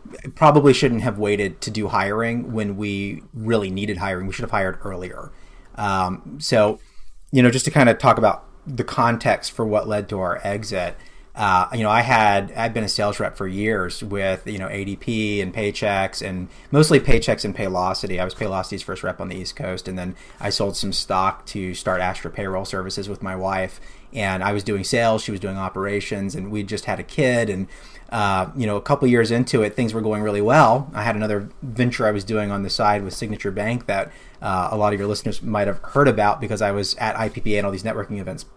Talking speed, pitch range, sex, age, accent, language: 225 wpm, 100-115 Hz, male, 30-49, American, English